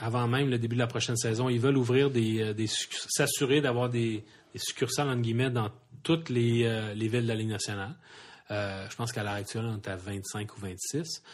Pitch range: 110-130 Hz